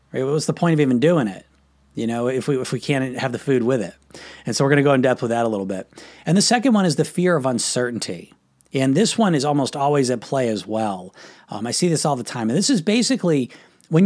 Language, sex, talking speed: English, male, 270 wpm